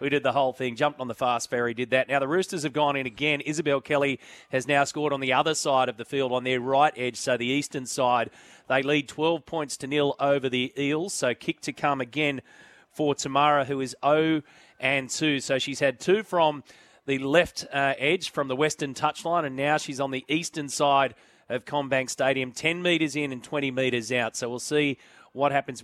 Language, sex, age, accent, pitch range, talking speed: English, male, 30-49, Australian, 130-150 Hz, 215 wpm